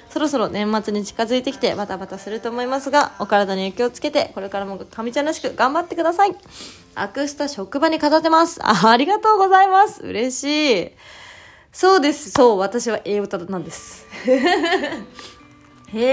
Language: Japanese